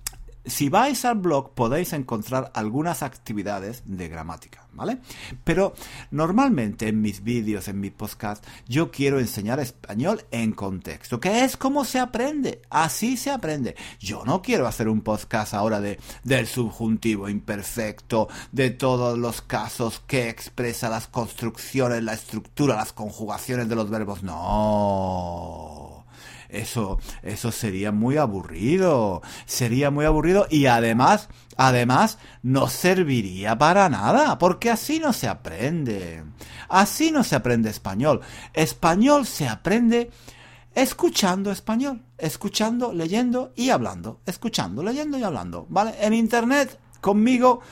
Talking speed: 130 wpm